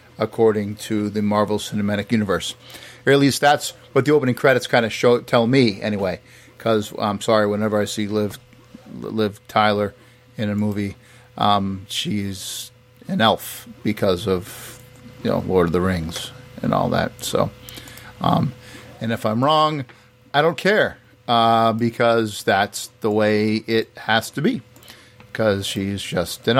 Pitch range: 105-125 Hz